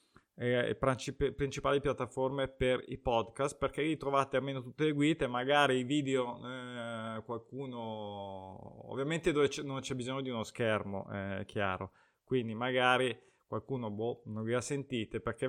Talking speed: 155 wpm